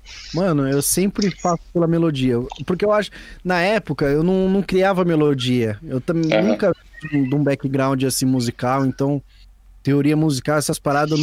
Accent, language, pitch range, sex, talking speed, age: Brazilian, Portuguese, 130-180 Hz, male, 155 wpm, 20-39